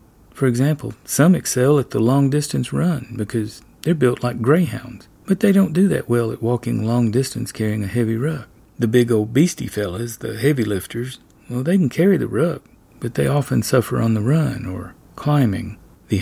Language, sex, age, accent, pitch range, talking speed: English, male, 40-59, American, 110-135 Hz, 185 wpm